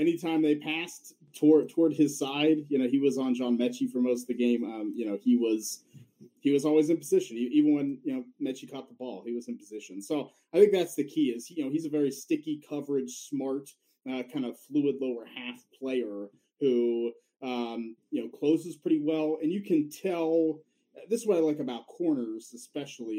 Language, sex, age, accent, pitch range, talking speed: English, male, 30-49, American, 120-160 Hz, 215 wpm